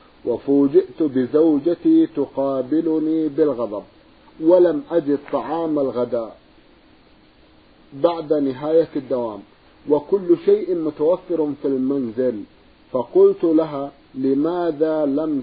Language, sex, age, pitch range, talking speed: Arabic, male, 50-69, 140-165 Hz, 80 wpm